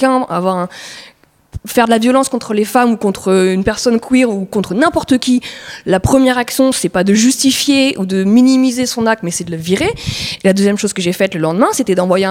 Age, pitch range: 20-39, 200-265 Hz